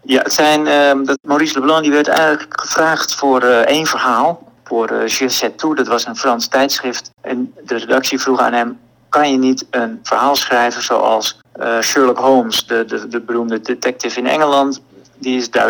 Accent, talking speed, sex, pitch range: Dutch, 190 wpm, male, 120-135 Hz